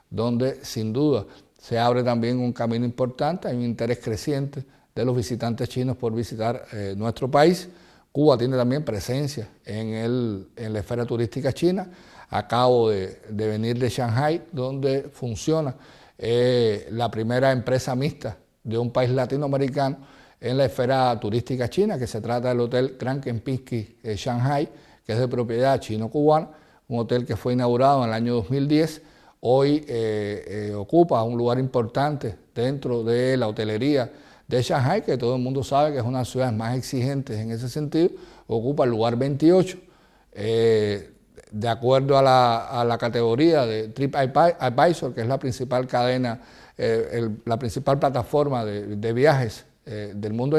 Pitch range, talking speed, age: 115-140 Hz, 160 wpm, 60-79